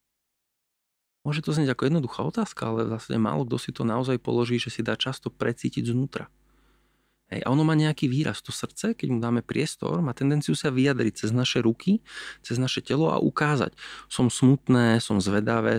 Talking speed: 185 wpm